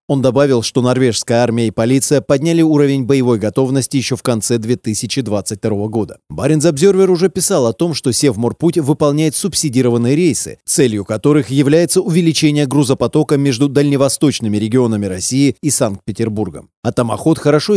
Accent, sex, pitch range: native, male, 115-150 Hz